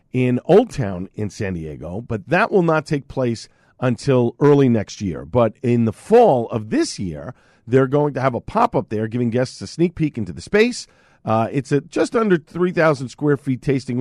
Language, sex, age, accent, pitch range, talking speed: English, male, 50-69, American, 115-150 Hz, 200 wpm